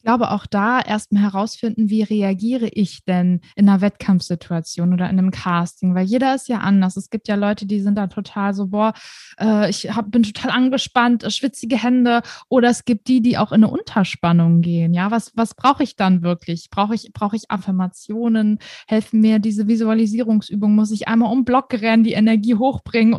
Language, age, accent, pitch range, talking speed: German, 20-39, German, 205-240 Hz, 195 wpm